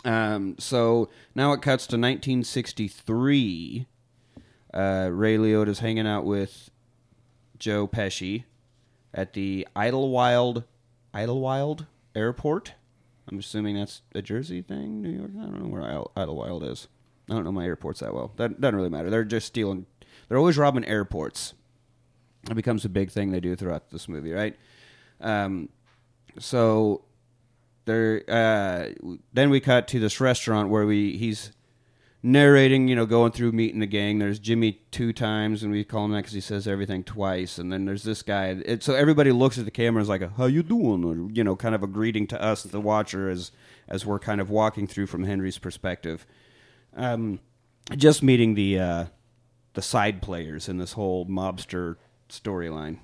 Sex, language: male, English